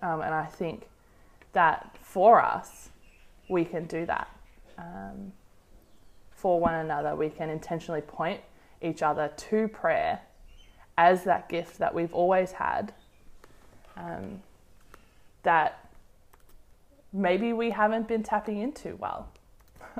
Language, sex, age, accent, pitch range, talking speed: English, female, 20-39, Australian, 160-190 Hz, 115 wpm